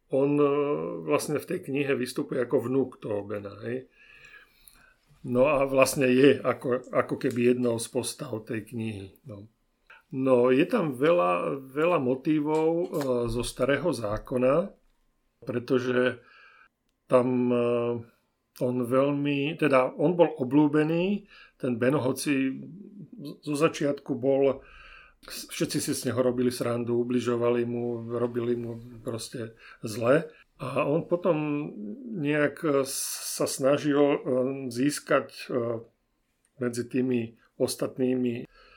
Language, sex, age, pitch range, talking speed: Slovak, male, 50-69, 120-145 Hz, 105 wpm